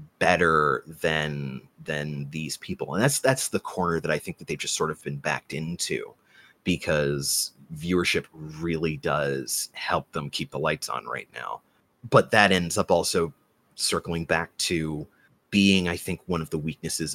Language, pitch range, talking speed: English, 75-90 Hz, 170 wpm